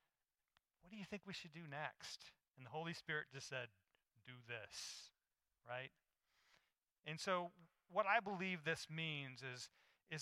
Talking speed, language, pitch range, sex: 155 wpm, English, 165-215 Hz, male